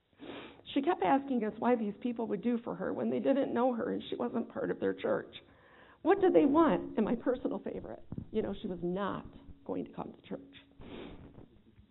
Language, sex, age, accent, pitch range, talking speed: English, female, 50-69, American, 195-260 Hz, 205 wpm